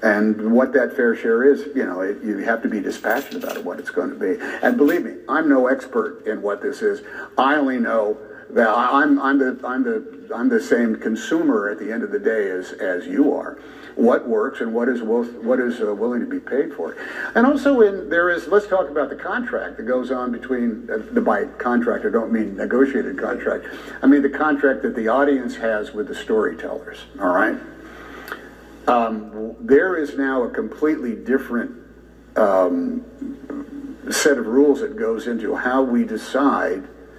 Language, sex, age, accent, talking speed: English, male, 60-79, American, 195 wpm